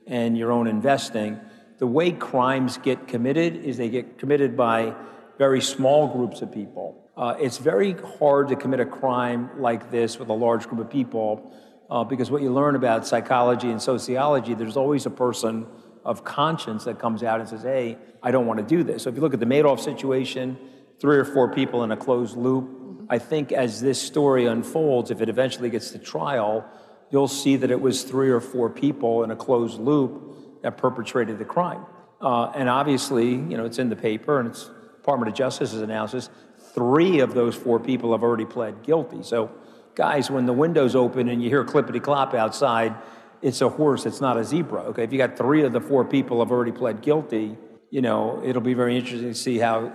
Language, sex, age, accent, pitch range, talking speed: English, male, 50-69, American, 115-135 Hz, 205 wpm